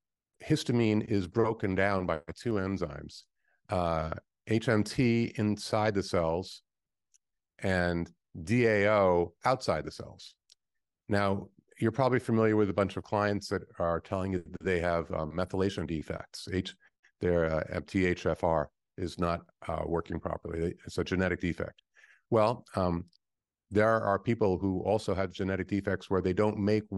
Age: 50-69